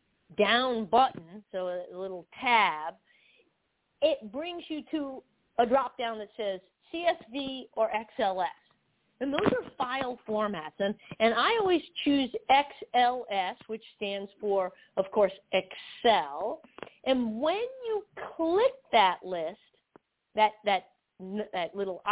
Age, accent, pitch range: 40-59, American, 195-255 Hz